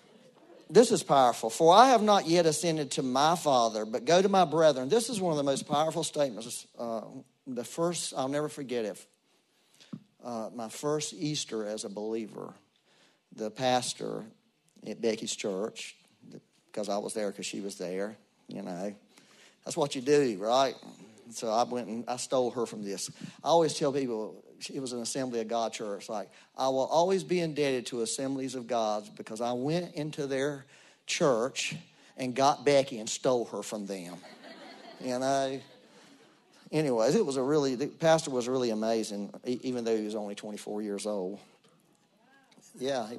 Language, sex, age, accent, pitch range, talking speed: English, male, 50-69, American, 115-150 Hz, 175 wpm